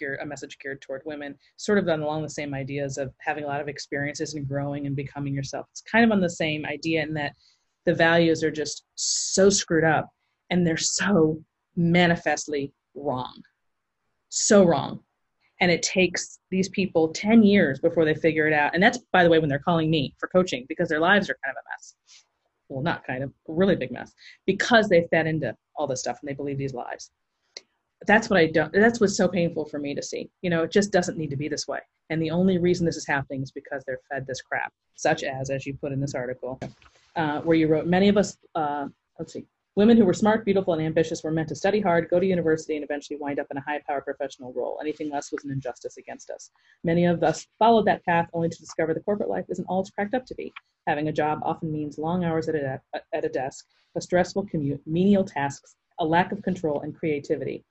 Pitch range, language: 145-180 Hz, English